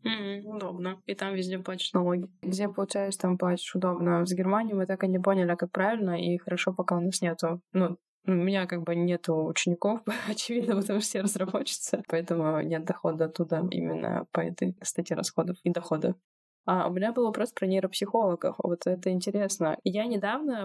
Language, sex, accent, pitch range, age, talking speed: Russian, female, native, 170-195 Hz, 20-39, 175 wpm